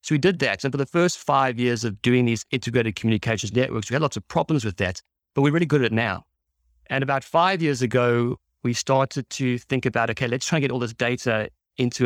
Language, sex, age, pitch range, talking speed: English, male, 30-49, 105-130 Hz, 245 wpm